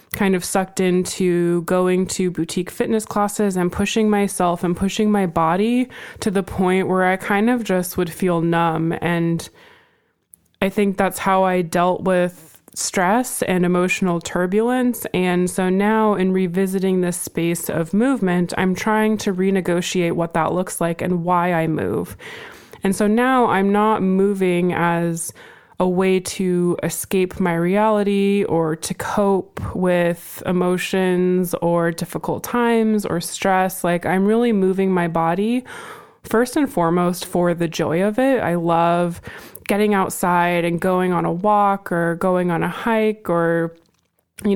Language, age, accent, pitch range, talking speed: English, 20-39, American, 175-200 Hz, 150 wpm